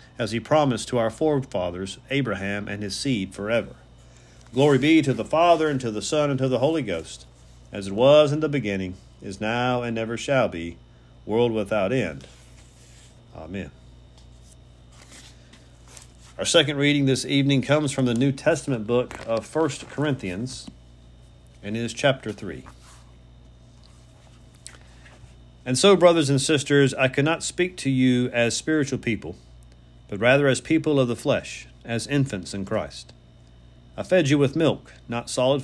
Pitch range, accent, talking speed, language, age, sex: 85-140 Hz, American, 150 wpm, English, 40-59, male